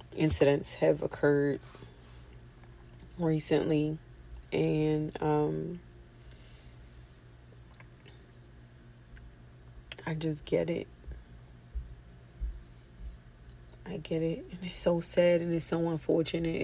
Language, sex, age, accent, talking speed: English, female, 30-49, American, 75 wpm